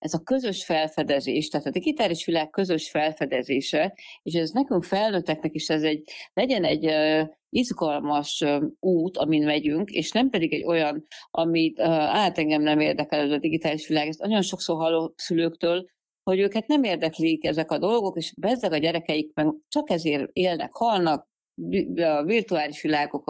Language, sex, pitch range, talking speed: Hungarian, female, 150-180 Hz, 155 wpm